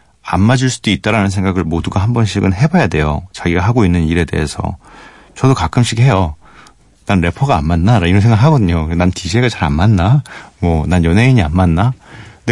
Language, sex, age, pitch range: Korean, male, 40-59, 90-115 Hz